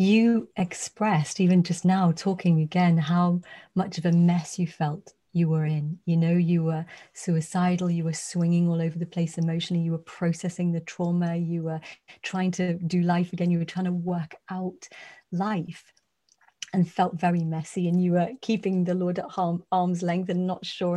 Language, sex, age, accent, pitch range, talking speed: English, female, 30-49, British, 170-200 Hz, 185 wpm